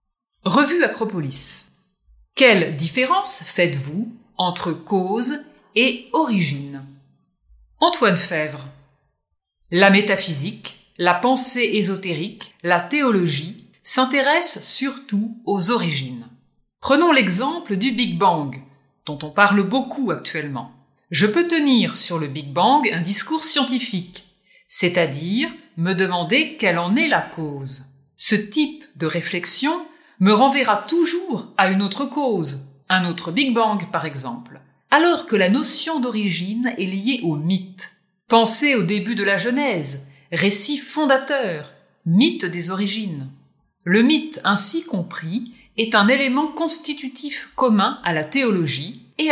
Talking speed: 120 wpm